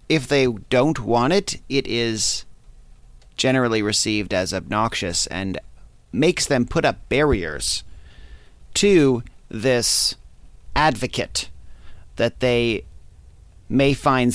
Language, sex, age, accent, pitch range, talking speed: English, male, 30-49, American, 105-140 Hz, 100 wpm